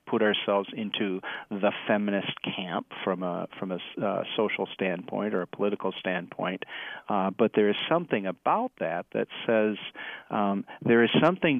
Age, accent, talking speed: 40-59, American, 155 wpm